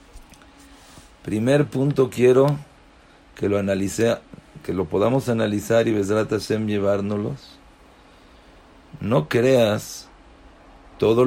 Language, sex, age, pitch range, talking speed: English, male, 40-59, 90-120 Hz, 90 wpm